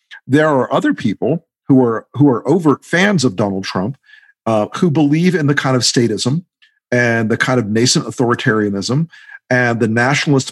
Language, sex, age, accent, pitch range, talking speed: English, male, 50-69, American, 120-160 Hz, 170 wpm